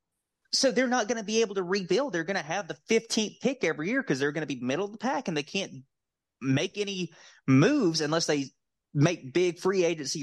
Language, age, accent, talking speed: English, 20-39, American, 230 wpm